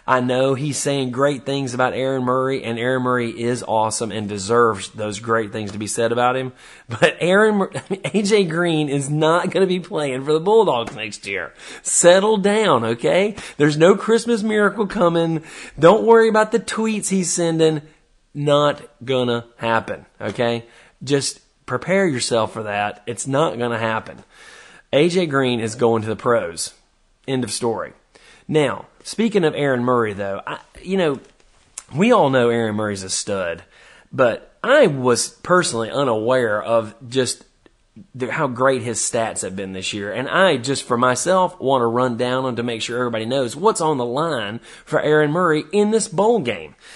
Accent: American